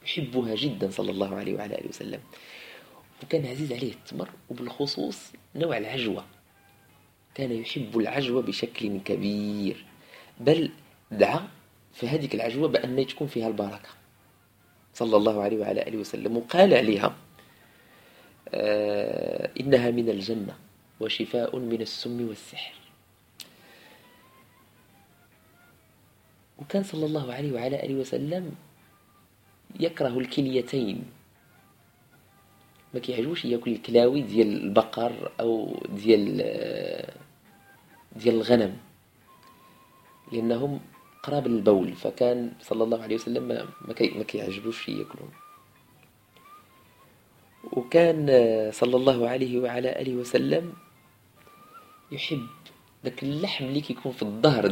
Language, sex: Arabic, male